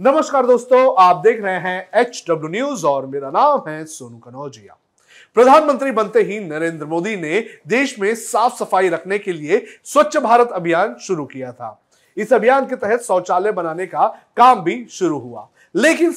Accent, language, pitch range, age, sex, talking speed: native, Hindi, 175-250 Hz, 30-49, male, 170 wpm